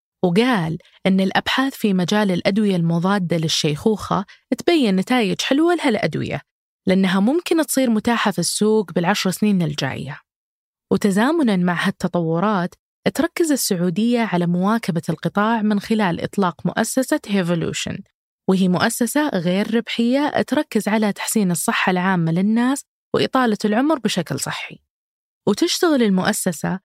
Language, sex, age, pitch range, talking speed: Arabic, female, 20-39, 180-230 Hz, 115 wpm